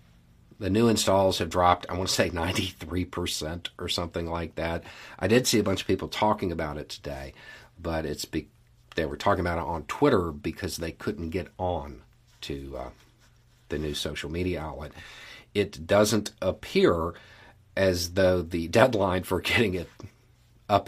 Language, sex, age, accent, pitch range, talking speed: English, male, 40-59, American, 80-105 Hz, 165 wpm